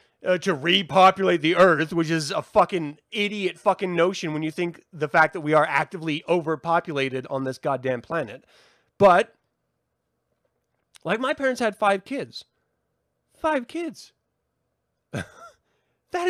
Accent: American